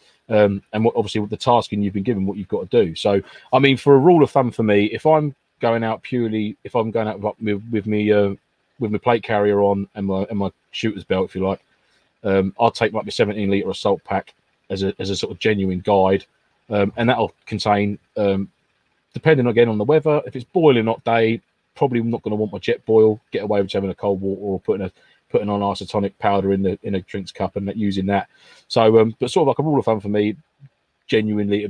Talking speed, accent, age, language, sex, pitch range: 245 wpm, British, 30-49, English, male, 100-115 Hz